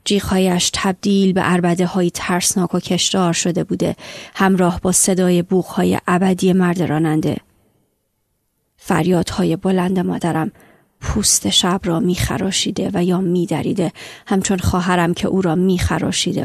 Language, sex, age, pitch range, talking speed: Persian, female, 30-49, 180-195 Hz, 120 wpm